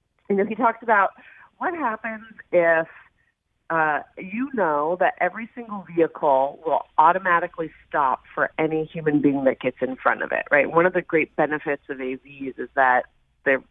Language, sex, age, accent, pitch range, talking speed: English, female, 40-59, American, 155-205 Hz, 165 wpm